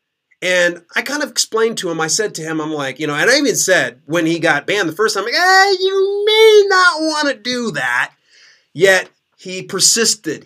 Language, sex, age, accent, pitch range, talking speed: English, male, 30-49, American, 170-260 Hz, 225 wpm